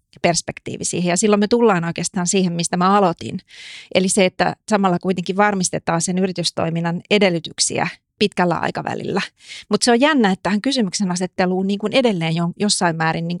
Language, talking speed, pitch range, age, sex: Finnish, 140 wpm, 175-205 Hz, 30-49, female